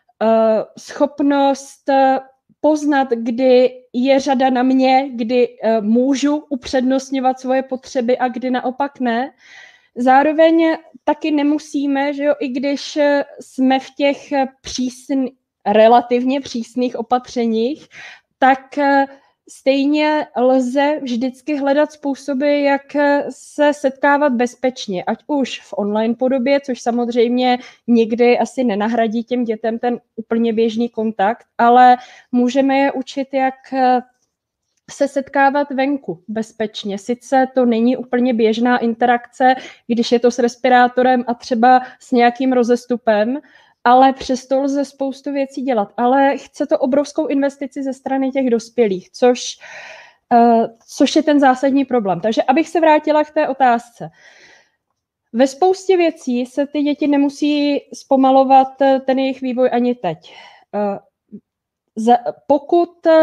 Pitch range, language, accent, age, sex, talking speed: 245-285 Hz, Czech, native, 20-39, female, 115 wpm